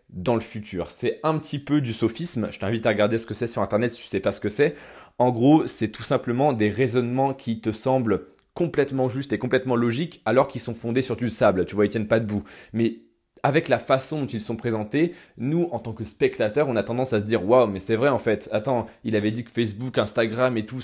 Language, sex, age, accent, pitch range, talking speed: French, male, 20-39, French, 105-130 Hz, 255 wpm